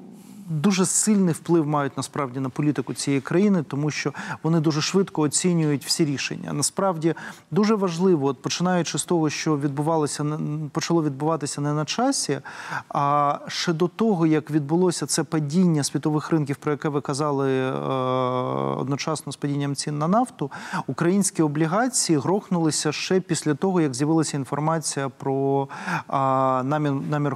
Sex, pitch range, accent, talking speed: male, 140-175 Hz, native, 135 wpm